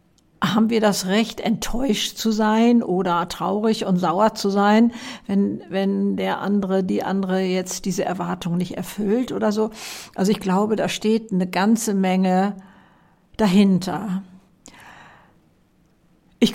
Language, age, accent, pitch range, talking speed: German, 60-79, German, 190-230 Hz, 130 wpm